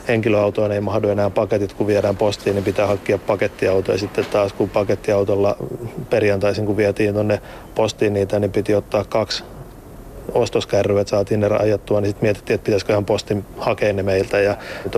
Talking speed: 170 wpm